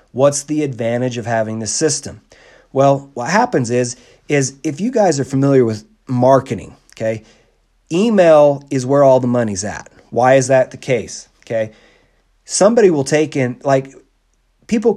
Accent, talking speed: American, 155 wpm